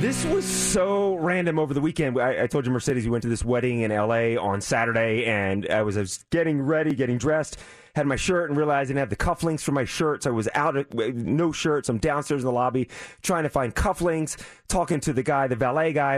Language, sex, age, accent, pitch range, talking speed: English, male, 30-49, American, 125-185 Hz, 235 wpm